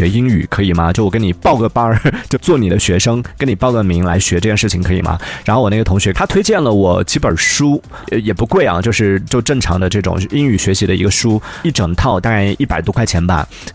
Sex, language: male, Chinese